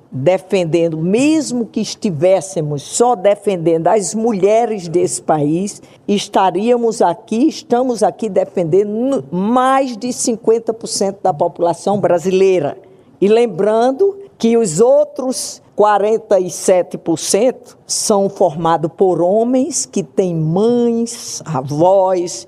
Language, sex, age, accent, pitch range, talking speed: Portuguese, female, 50-69, Brazilian, 180-235 Hz, 95 wpm